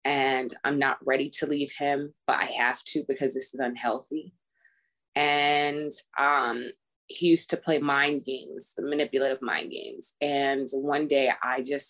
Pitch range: 135-155 Hz